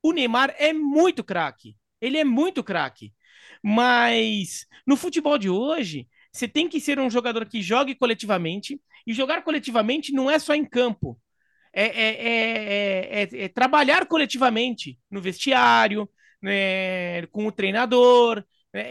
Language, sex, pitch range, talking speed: Portuguese, male, 195-285 Hz, 145 wpm